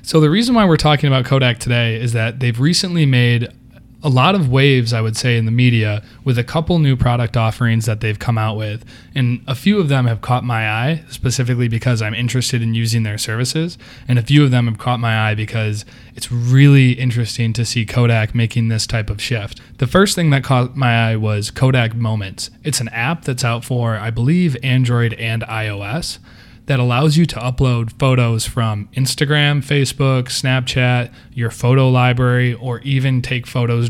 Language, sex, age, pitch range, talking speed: English, male, 20-39, 115-135 Hz, 195 wpm